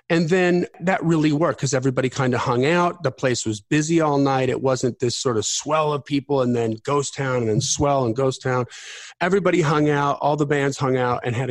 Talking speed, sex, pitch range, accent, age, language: 235 wpm, male, 120-150 Hz, American, 40-59, English